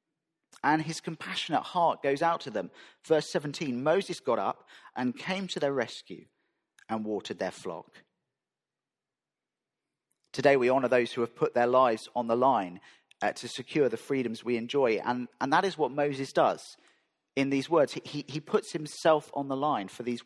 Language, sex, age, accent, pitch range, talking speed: English, male, 40-59, British, 135-170 Hz, 180 wpm